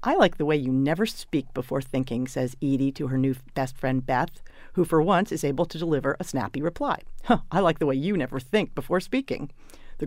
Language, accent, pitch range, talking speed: English, American, 135-165 Hz, 220 wpm